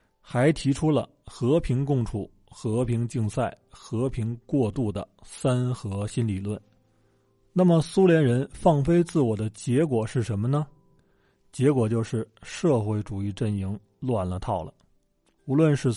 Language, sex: Chinese, male